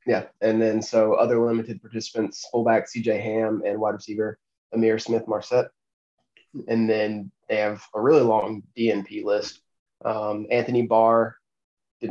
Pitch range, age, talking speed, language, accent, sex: 105-115 Hz, 20-39, 140 wpm, English, American, male